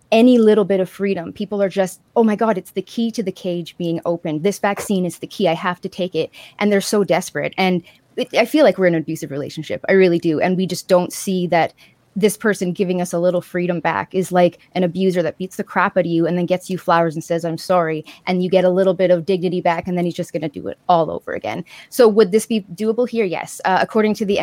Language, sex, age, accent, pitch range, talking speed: English, female, 20-39, American, 170-200 Hz, 270 wpm